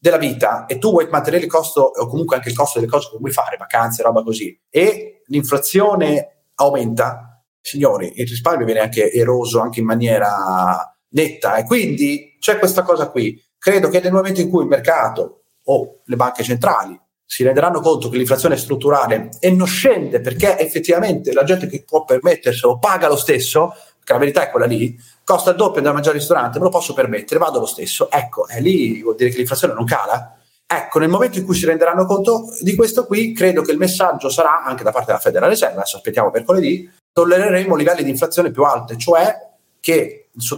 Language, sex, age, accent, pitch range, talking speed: Italian, male, 40-59, native, 140-190 Hz, 205 wpm